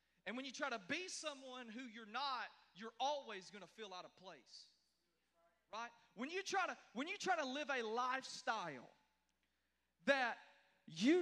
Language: English